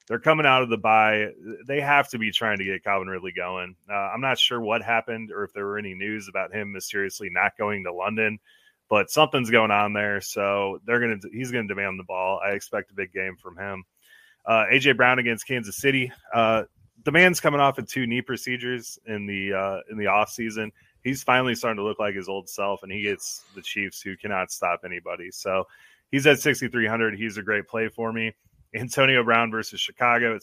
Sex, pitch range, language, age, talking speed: male, 100-120 Hz, English, 20-39, 215 wpm